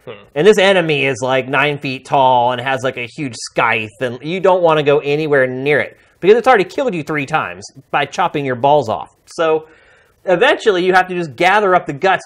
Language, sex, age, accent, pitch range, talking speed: English, male, 30-49, American, 130-170 Hz, 220 wpm